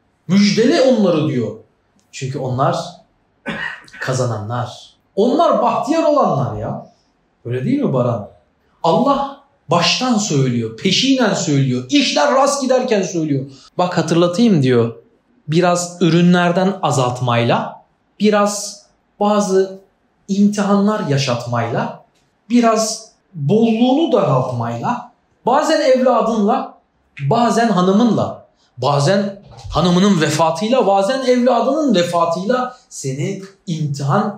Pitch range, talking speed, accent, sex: 135-215 Hz, 85 wpm, native, male